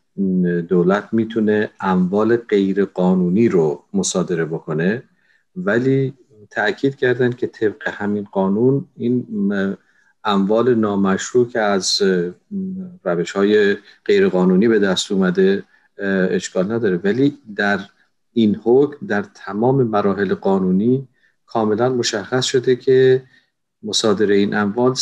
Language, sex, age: Persian, male, 50-69